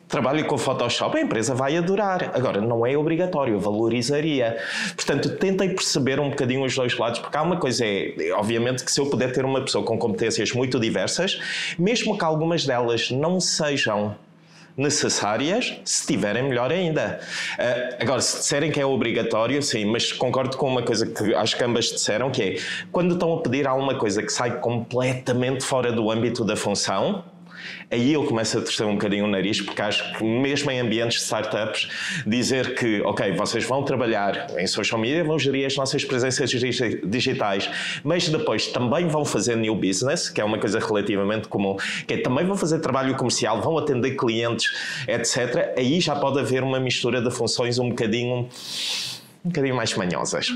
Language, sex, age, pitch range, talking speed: Portuguese, male, 20-39, 115-145 Hz, 175 wpm